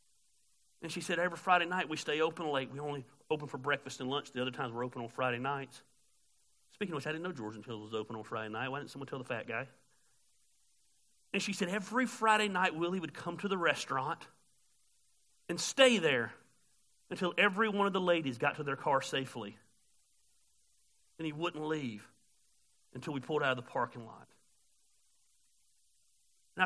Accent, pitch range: American, 140-200 Hz